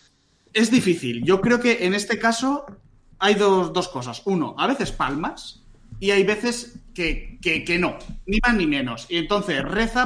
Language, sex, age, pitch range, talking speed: Spanish, male, 30-49, 130-190 Hz, 180 wpm